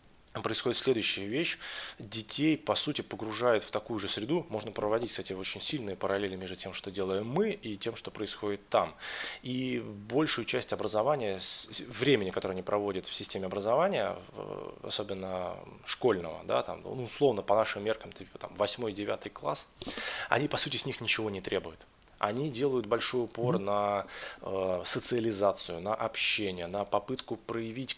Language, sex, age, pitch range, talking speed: Russian, male, 20-39, 95-115 Hz, 145 wpm